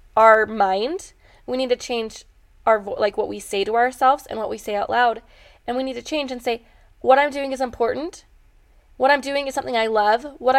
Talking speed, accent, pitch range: 220 wpm, American, 215-275 Hz